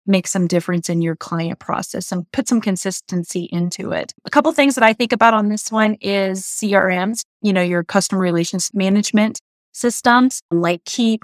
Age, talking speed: 20-39, 185 wpm